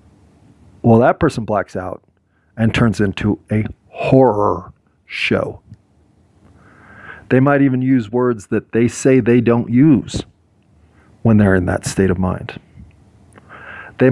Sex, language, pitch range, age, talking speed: male, English, 100-125 Hz, 40-59, 125 wpm